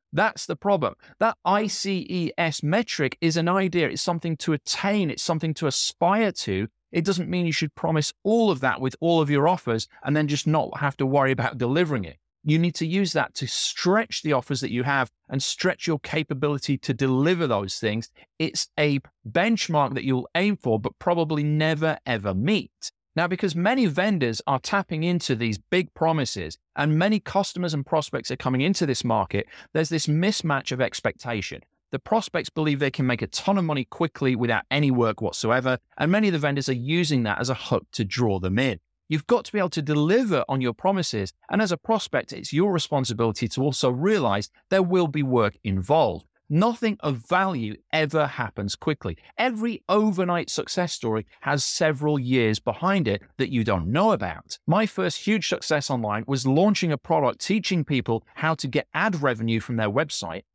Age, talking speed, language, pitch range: 30-49, 190 wpm, English, 125-180 Hz